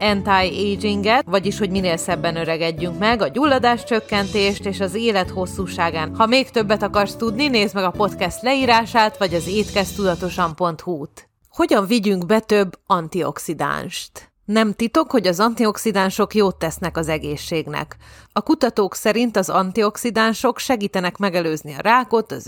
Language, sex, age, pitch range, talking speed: Hungarian, female, 30-49, 175-225 Hz, 140 wpm